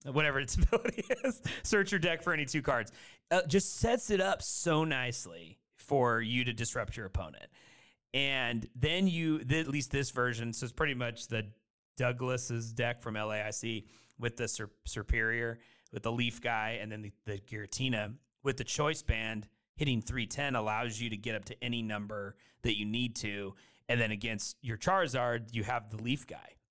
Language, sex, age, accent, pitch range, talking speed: English, male, 30-49, American, 110-140 Hz, 180 wpm